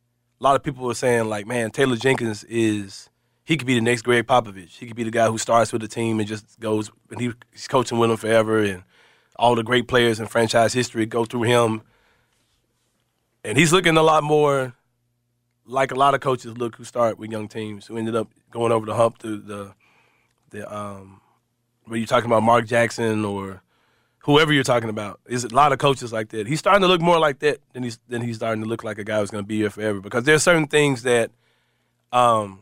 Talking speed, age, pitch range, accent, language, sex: 230 wpm, 30-49, 110-130 Hz, American, English, male